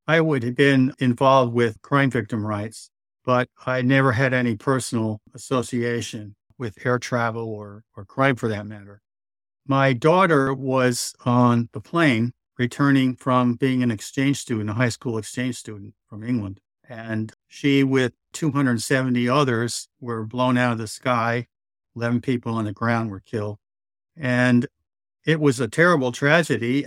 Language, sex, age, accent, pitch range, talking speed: English, male, 50-69, American, 115-135 Hz, 150 wpm